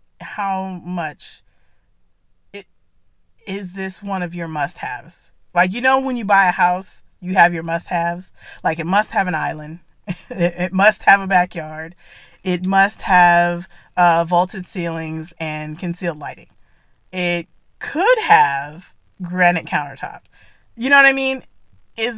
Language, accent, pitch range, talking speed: English, American, 170-195 Hz, 140 wpm